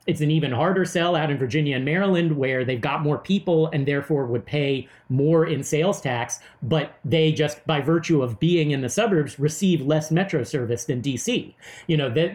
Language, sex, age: English, male, 40-59